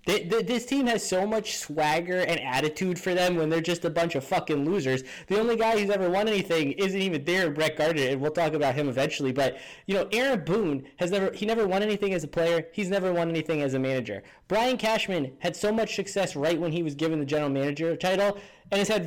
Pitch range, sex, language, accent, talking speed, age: 150-200 Hz, male, English, American, 235 wpm, 10-29